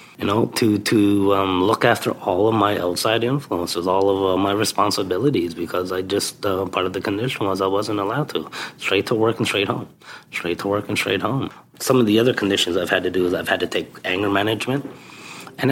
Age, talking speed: 30-49, 225 wpm